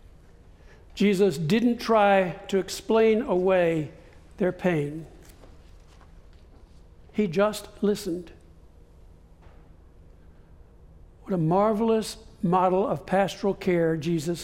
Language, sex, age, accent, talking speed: English, male, 60-79, American, 80 wpm